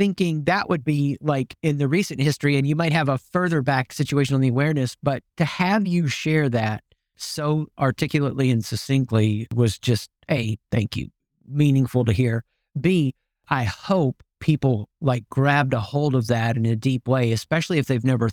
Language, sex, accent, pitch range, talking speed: English, male, American, 115-145 Hz, 185 wpm